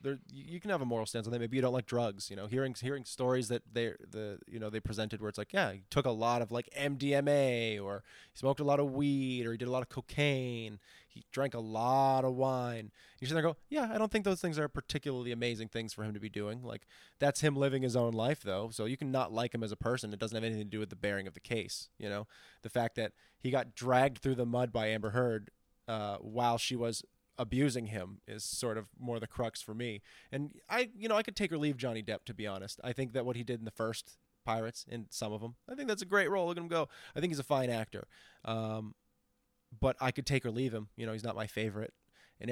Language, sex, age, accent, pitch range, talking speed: English, male, 20-39, American, 110-135 Hz, 270 wpm